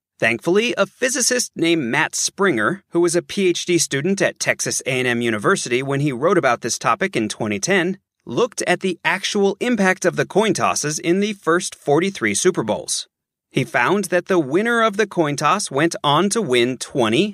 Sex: male